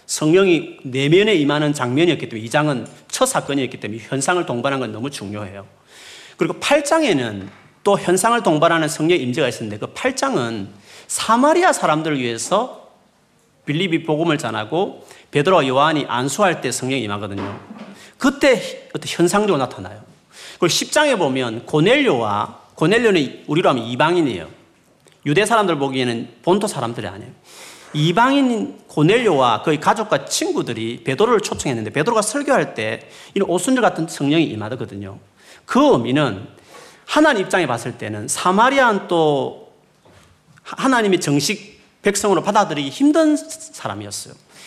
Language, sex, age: Korean, male, 40-59